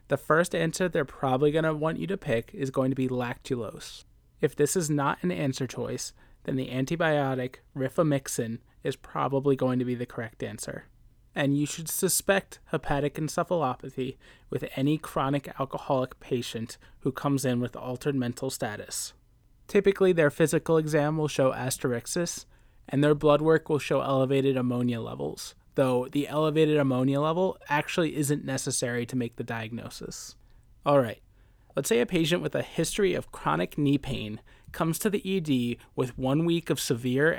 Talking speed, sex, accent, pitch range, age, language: 165 wpm, male, American, 125-155 Hz, 20-39, English